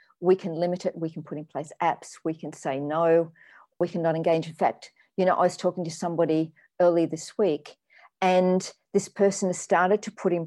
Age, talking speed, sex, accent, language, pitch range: 50-69, 220 wpm, female, Australian, English, 165-200 Hz